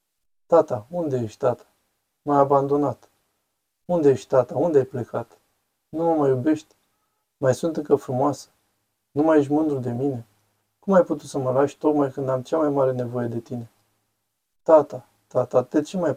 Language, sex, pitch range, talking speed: Romanian, male, 110-145 Hz, 170 wpm